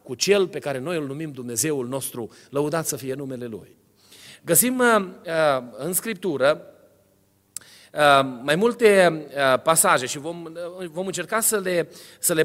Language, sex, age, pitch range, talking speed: Romanian, male, 40-59, 155-230 Hz, 155 wpm